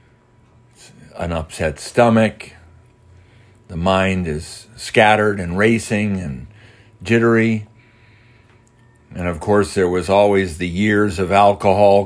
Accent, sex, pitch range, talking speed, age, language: American, male, 95-125 Hz, 105 wpm, 50-69, English